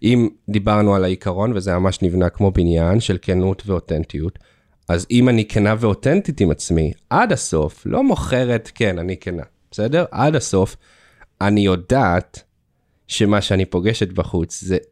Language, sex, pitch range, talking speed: Hebrew, male, 90-125 Hz, 145 wpm